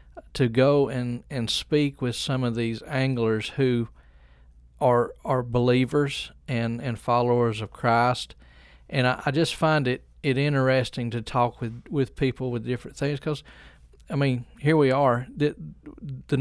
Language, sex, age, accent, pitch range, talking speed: English, male, 40-59, American, 115-140 Hz, 155 wpm